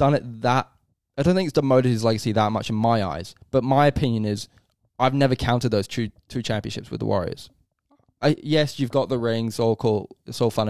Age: 10-29